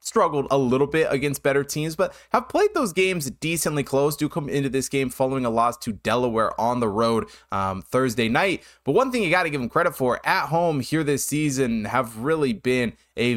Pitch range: 110-140 Hz